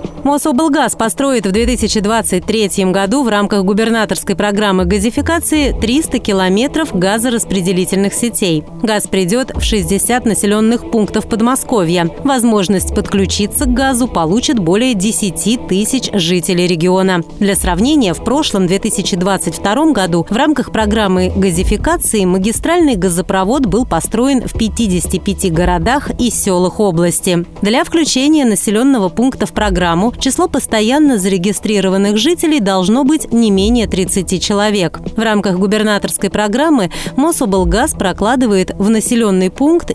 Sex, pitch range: female, 190-245 Hz